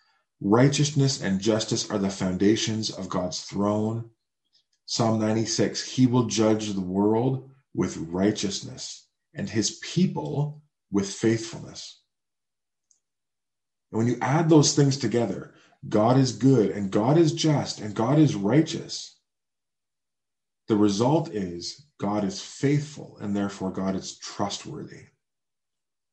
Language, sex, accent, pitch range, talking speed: English, male, American, 100-130 Hz, 120 wpm